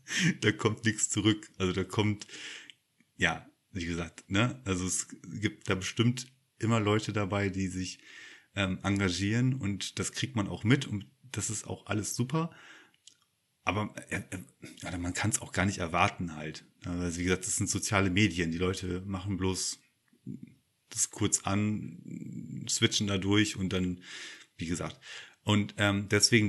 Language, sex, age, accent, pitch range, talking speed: German, male, 30-49, German, 95-110 Hz, 160 wpm